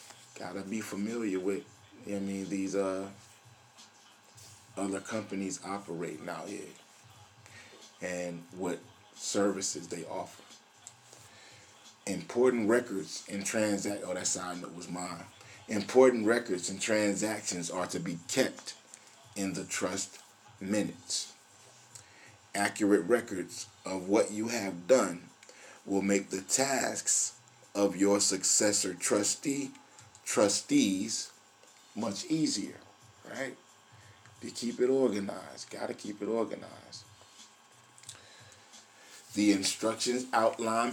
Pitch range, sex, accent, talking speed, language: 95-110 Hz, male, American, 90 wpm, English